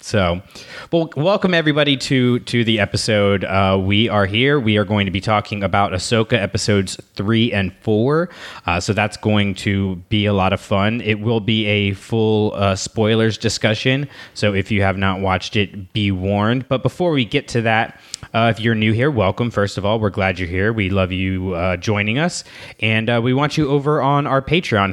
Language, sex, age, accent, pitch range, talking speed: English, male, 20-39, American, 95-120 Hz, 205 wpm